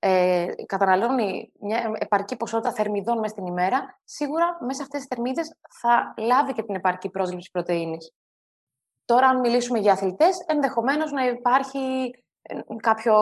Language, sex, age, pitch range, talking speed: Greek, female, 20-39, 180-245 Hz, 140 wpm